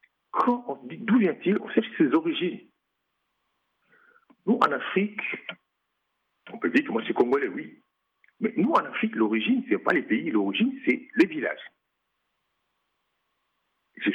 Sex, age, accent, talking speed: male, 60-79, French, 150 wpm